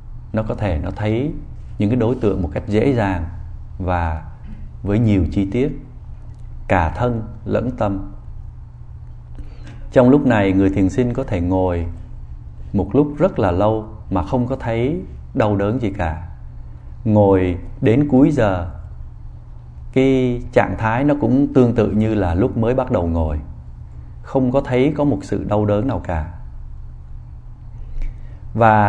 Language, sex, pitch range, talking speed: Vietnamese, male, 90-120 Hz, 150 wpm